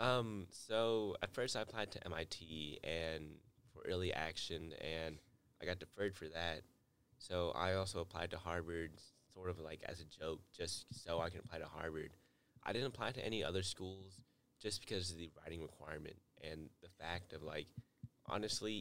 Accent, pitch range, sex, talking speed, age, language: American, 80-95 Hz, male, 180 wpm, 20-39, English